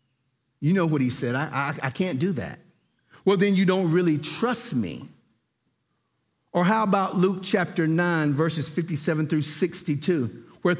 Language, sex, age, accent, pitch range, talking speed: English, male, 40-59, American, 130-180 Hz, 160 wpm